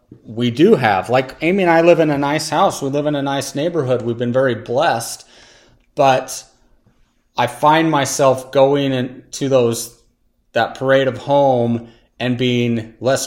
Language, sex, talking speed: English, male, 165 wpm